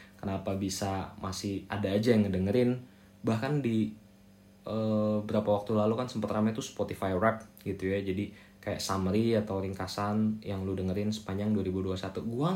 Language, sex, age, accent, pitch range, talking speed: English, male, 20-39, Indonesian, 95-120 Hz, 150 wpm